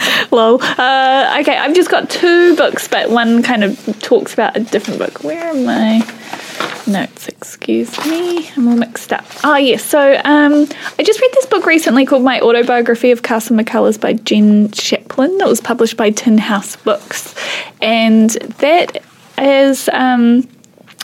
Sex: female